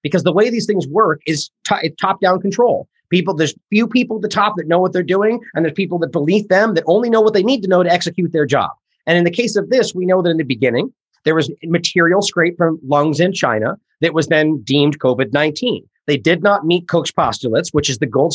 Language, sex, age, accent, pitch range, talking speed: English, male, 30-49, American, 150-195 Hz, 245 wpm